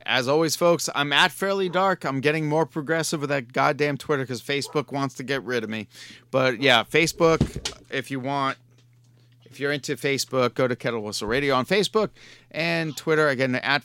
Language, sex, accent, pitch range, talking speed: English, male, American, 125-160 Hz, 190 wpm